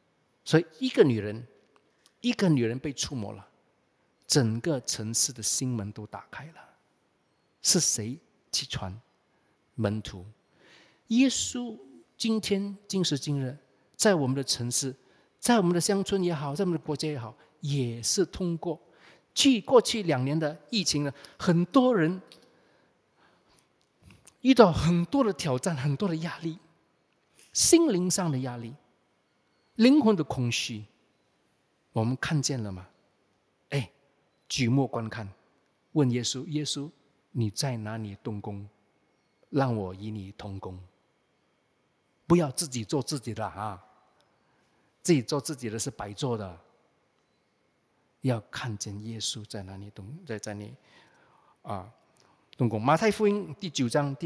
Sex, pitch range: male, 110-170 Hz